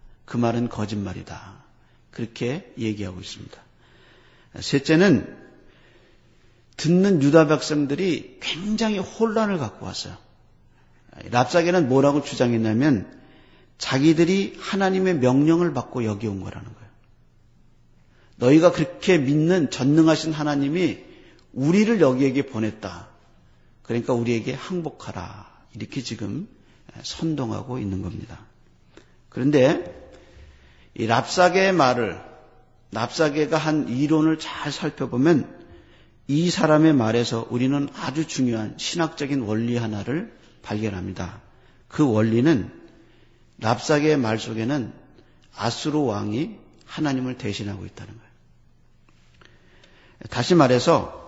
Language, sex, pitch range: Korean, male, 110-160 Hz